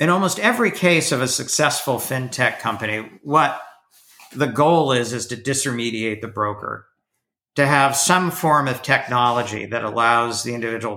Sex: male